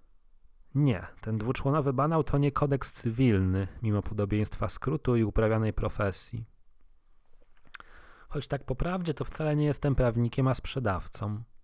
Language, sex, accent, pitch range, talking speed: Polish, male, native, 95-130 Hz, 130 wpm